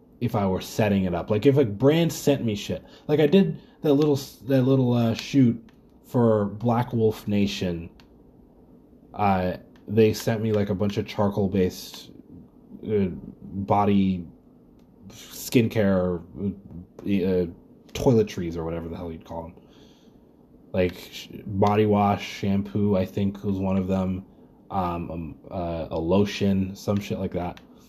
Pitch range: 95-120 Hz